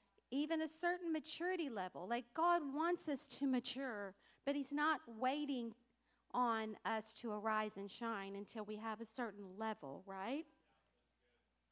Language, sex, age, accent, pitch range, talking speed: English, female, 50-69, American, 215-285 Hz, 145 wpm